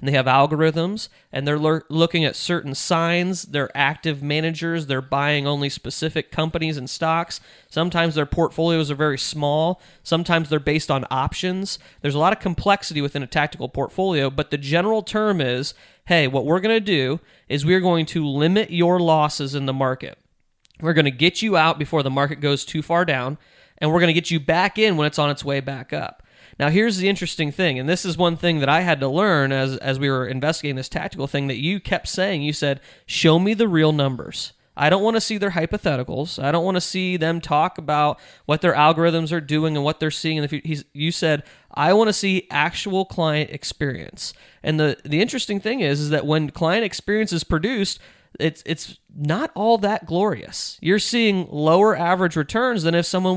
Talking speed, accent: 210 wpm, American